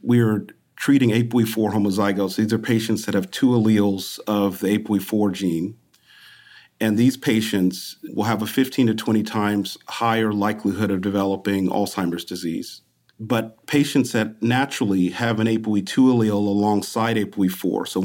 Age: 40-59